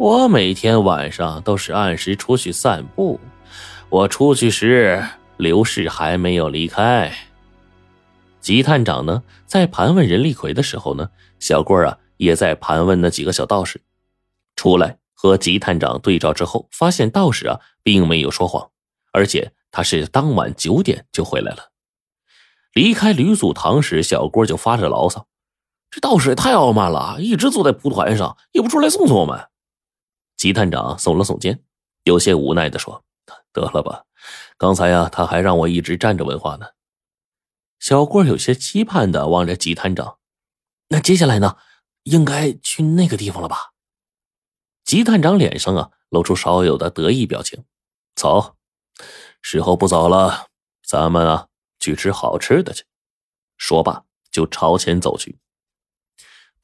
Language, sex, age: Chinese, male, 30-49